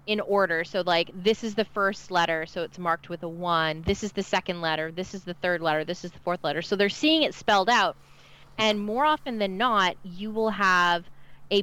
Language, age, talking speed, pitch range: English, 20-39, 230 wpm, 160-200 Hz